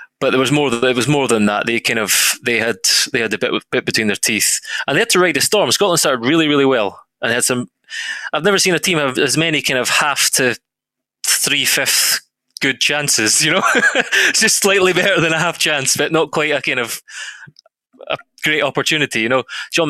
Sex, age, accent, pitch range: male, 20-39, British, 115-155 Hz